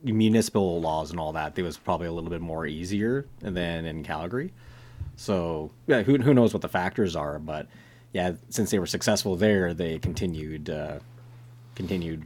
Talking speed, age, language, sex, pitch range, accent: 175 wpm, 30-49, English, male, 80-115 Hz, American